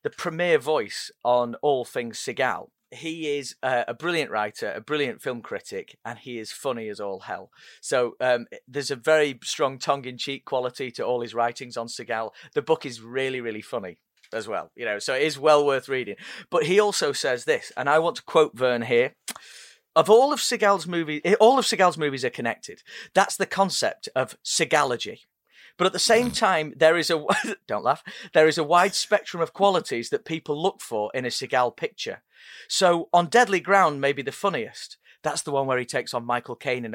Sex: male